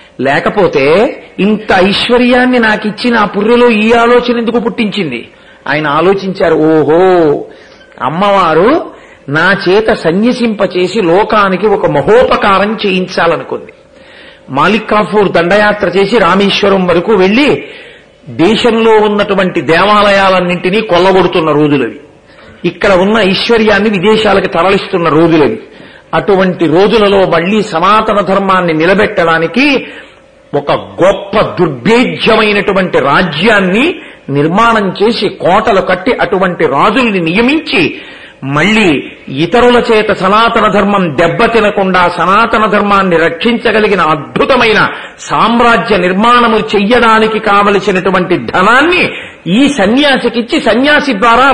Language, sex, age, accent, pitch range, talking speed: Telugu, male, 40-59, native, 185-235 Hz, 90 wpm